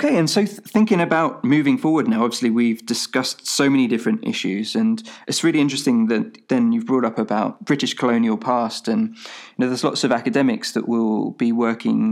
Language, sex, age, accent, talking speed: English, male, 20-39, British, 200 wpm